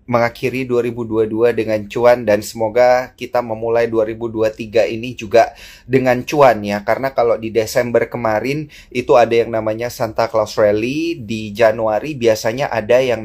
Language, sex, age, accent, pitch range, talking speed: Indonesian, male, 30-49, native, 110-125 Hz, 140 wpm